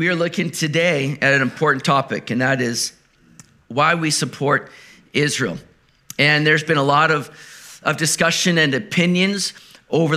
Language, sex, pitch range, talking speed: English, male, 145-180 Hz, 155 wpm